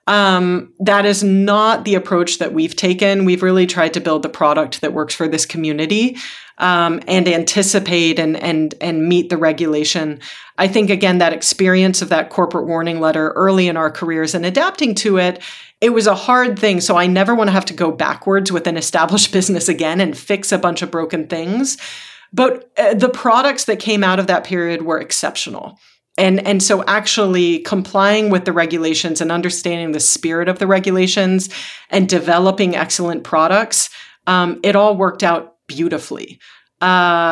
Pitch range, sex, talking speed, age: 165-200 Hz, female, 180 wpm, 40-59